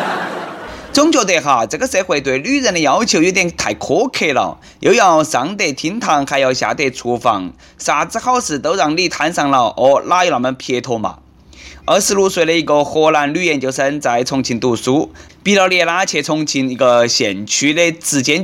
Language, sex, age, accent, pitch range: Chinese, male, 20-39, native, 130-185 Hz